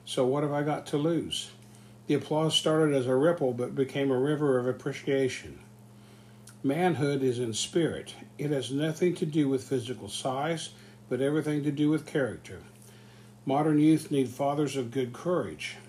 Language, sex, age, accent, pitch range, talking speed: English, male, 60-79, American, 110-145 Hz, 165 wpm